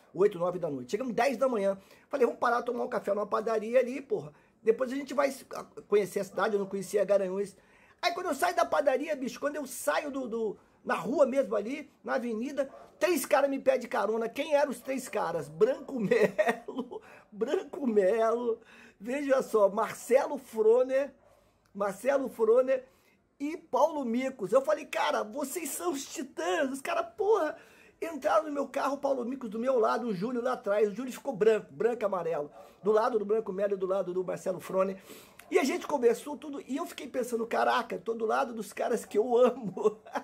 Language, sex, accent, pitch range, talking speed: Portuguese, male, Brazilian, 210-285 Hz, 190 wpm